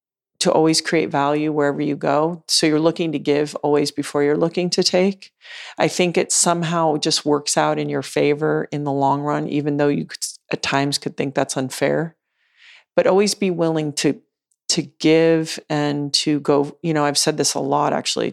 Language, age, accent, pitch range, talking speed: English, 40-59, American, 145-180 Hz, 195 wpm